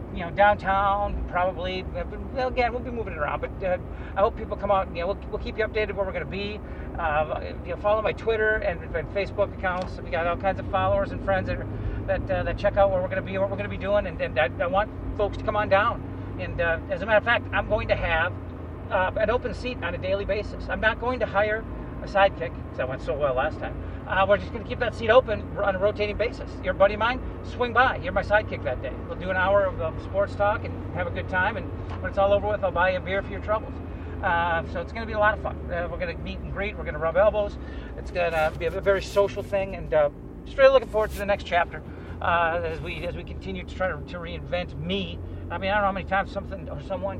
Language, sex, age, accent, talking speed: English, male, 40-59, American, 285 wpm